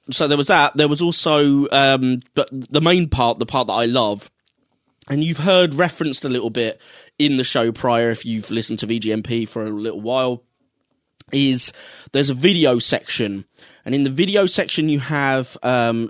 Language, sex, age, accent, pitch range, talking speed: English, male, 20-39, British, 115-135 Hz, 190 wpm